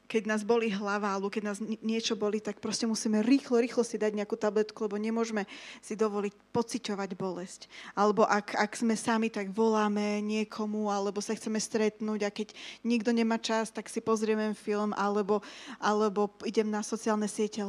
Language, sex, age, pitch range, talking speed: Slovak, female, 20-39, 205-235 Hz, 175 wpm